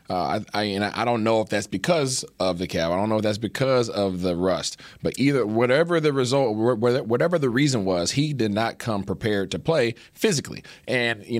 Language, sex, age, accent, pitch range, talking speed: English, male, 30-49, American, 95-120 Hz, 215 wpm